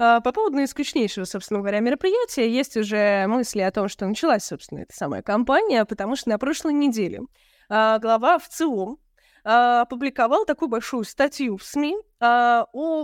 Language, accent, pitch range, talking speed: Russian, native, 215-285 Hz, 145 wpm